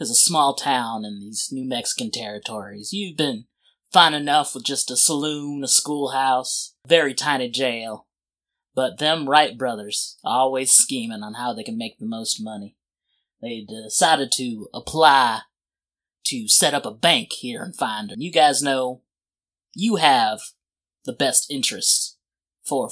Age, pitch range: 20-39, 120-175 Hz